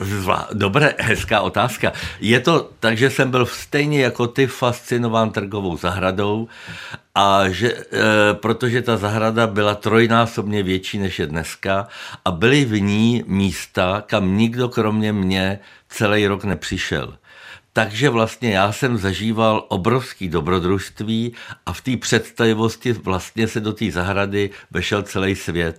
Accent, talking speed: native, 135 wpm